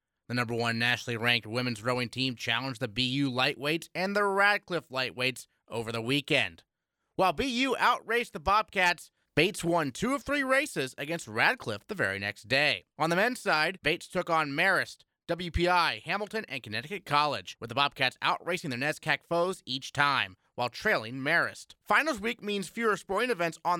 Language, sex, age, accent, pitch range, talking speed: English, male, 30-49, American, 130-195 Hz, 170 wpm